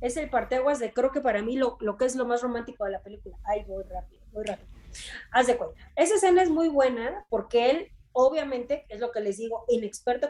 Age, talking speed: 20-39, 235 wpm